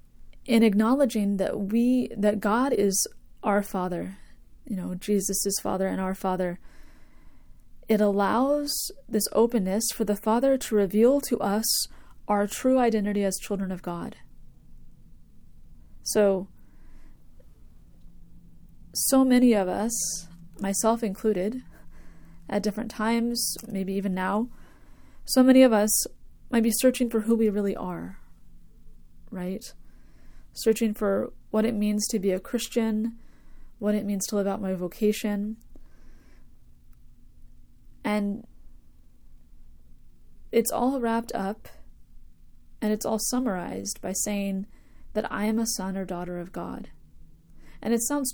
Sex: female